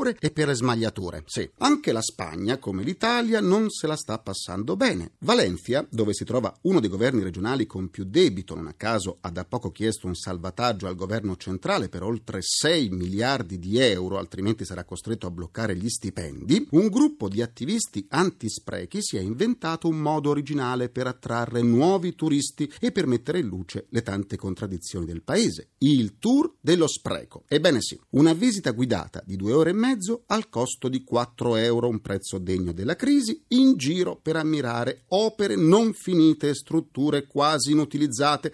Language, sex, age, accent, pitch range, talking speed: Italian, male, 40-59, native, 100-165 Hz, 170 wpm